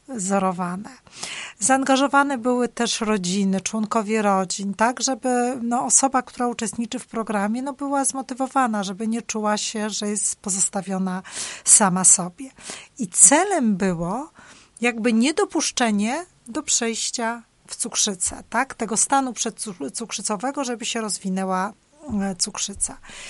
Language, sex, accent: Polish, female, native